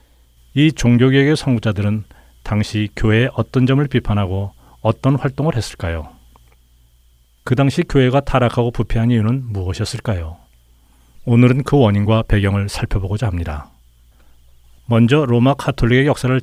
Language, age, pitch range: Korean, 40-59, 85-125 Hz